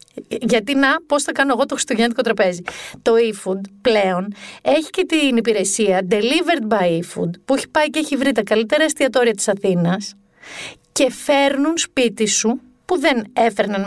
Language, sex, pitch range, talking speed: Greek, female, 220-315 Hz, 155 wpm